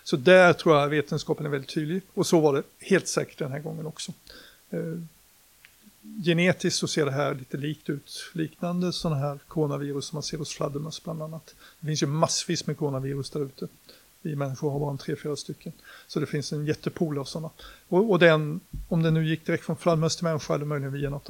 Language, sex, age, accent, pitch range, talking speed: Swedish, male, 60-79, native, 150-175 Hz, 215 wpm